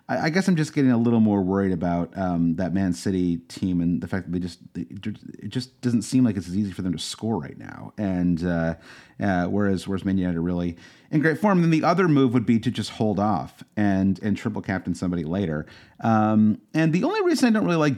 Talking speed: 245 wpm